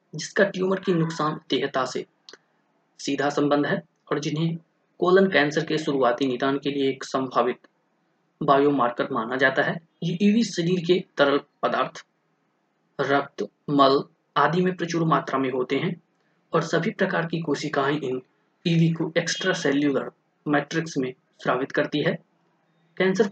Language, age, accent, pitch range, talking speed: Hindi, 20-39, native, 145-180 Hz, 140 wpm